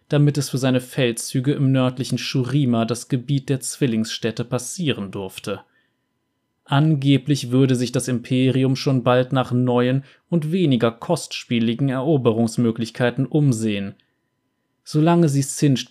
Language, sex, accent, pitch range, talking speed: German, male, German, 120-140 Hz, 115 wpm